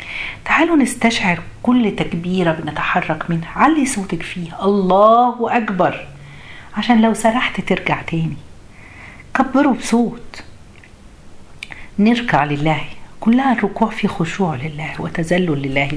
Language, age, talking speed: Arabic, 50-69, 100 wpm